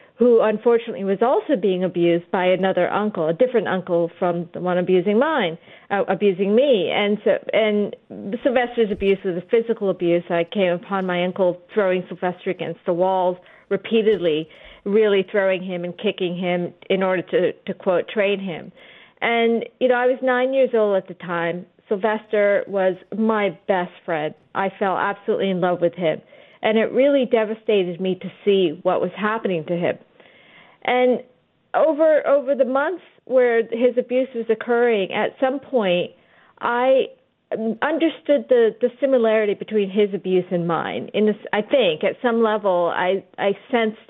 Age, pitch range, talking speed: 40-59, 185-235 Hz, 165 wpm